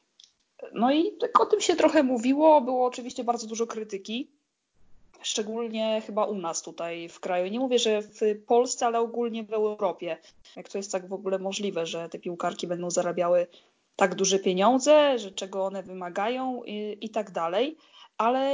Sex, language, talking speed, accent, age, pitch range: female, Polish, 170 wpm, native, 20-39, 205-245 Hz